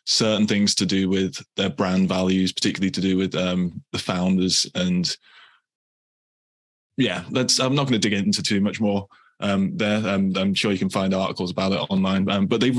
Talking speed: 190 wpm